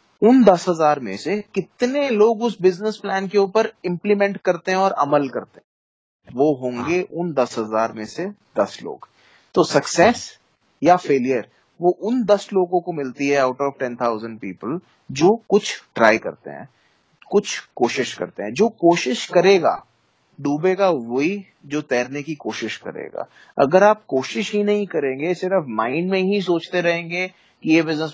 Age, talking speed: 20-39, 165 wpm